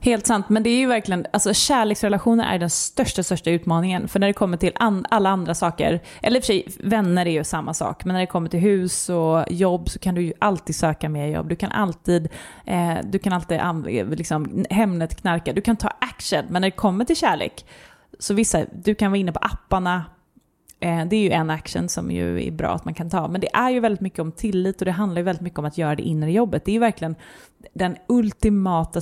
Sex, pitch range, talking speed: female, 165-205 Hz, 240 wpm